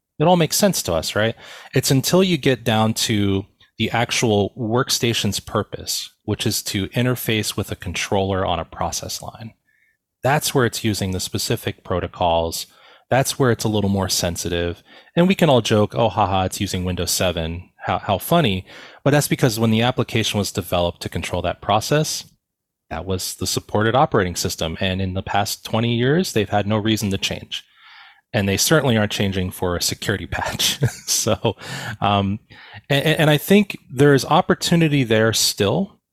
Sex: male